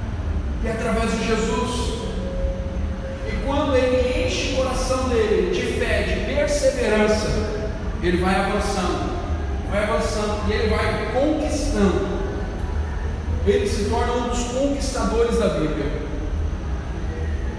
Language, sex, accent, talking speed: Portuguese, male, Brazilian, 110 wpm